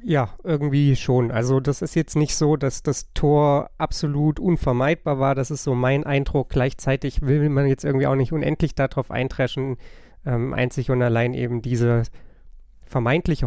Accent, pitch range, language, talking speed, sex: German, 125-155 Hz, German, 165 wpm, male